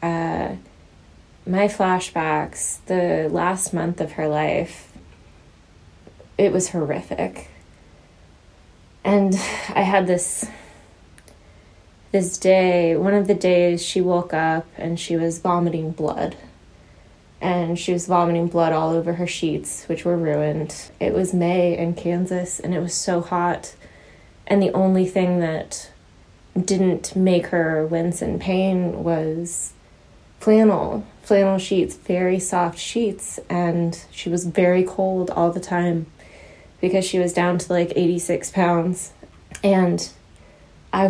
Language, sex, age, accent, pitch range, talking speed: English, female, 20-39, American, 150-190 Hz, 130 wpm